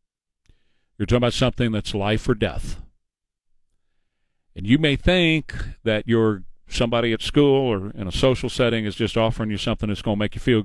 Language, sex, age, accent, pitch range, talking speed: English, male, 50-69, American, 100-125 Hz, 185 wpm